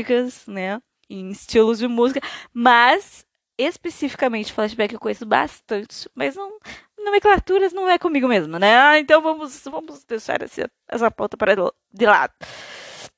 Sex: female